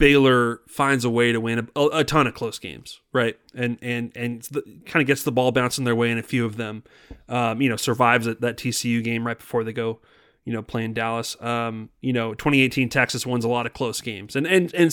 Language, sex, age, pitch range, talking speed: English, male, 30-49, 120-140 Hz, 235 wpm